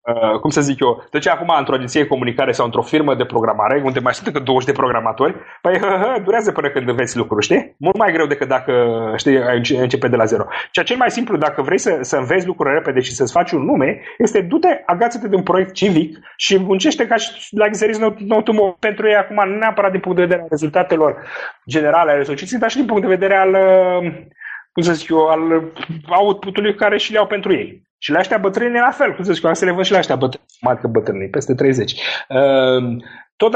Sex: male